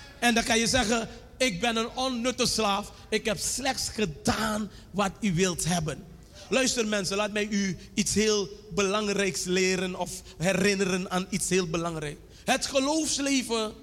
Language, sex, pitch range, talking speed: Dutch, male, 210-285 Hz, 150 wpm